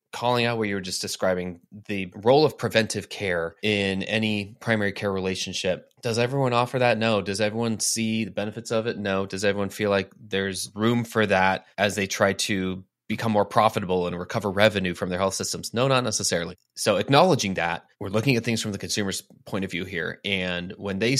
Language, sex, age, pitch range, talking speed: English, male, 20-39, 95-115 Hz, 205 wpm